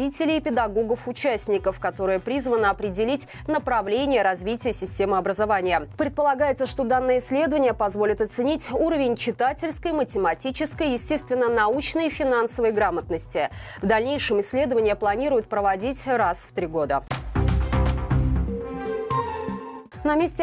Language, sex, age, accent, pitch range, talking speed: Russian, female, 20-39, native, 210-275 Hz, 95 wpm